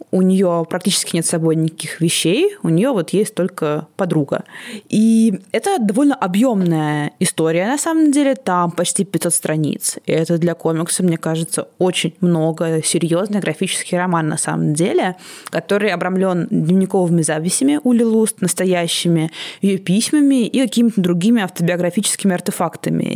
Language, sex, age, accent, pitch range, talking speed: Russian, female, 20-39, native, 170-230 Hz, 135 wpm